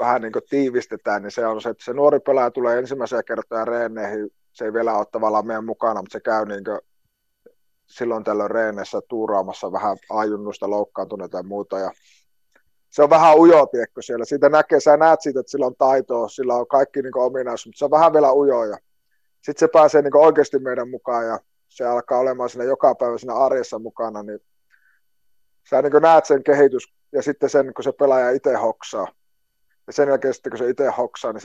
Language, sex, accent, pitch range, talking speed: Finnish, male, native, 115-145 Hz, 195 wpm